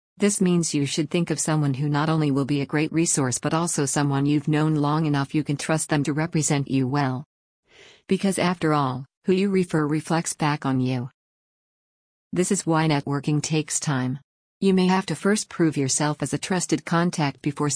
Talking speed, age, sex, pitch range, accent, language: 195 wpm, 50-69, female, 140-165 Hz, American, English